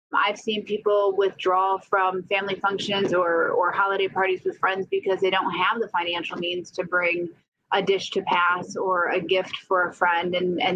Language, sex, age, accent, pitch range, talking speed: English, female, 30-49, American, 180-225 Hz, 190 wpm